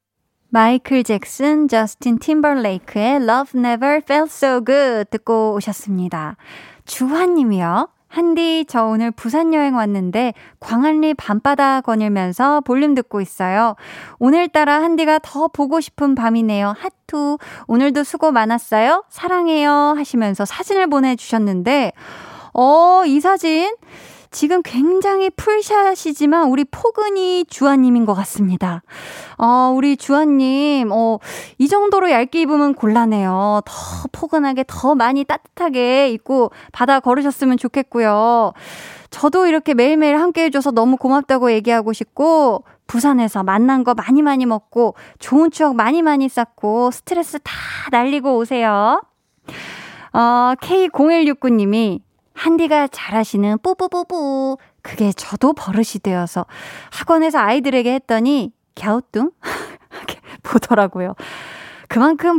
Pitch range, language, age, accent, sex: 225-305 Hz, Korean, 20-39, native, female